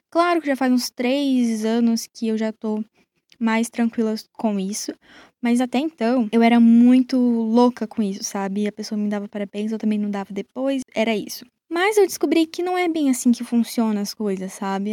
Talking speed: 200 wpm